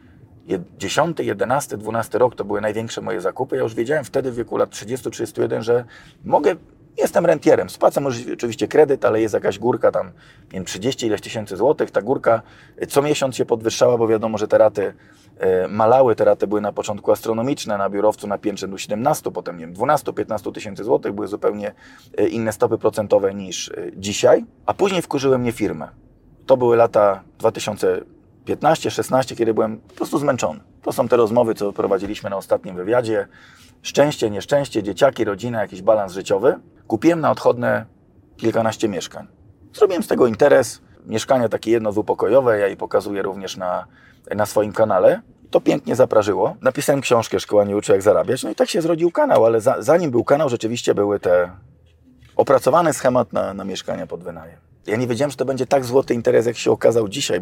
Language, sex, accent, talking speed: Polish, male, native, 180 wpm